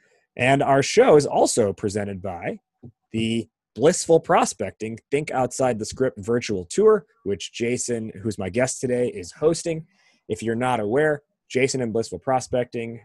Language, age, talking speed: English, 20-39, 145 wpm